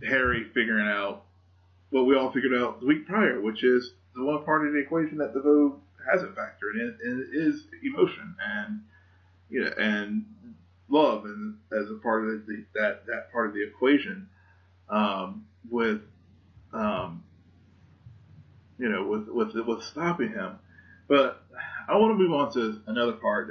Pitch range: 95-150 Hz